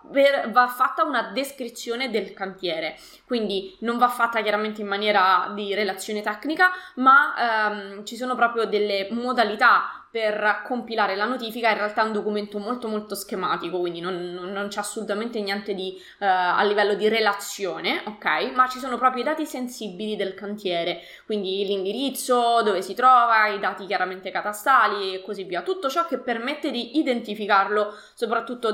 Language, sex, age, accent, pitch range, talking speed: Italian, female, 20-39, native, 200-255 Hz, 165 wpm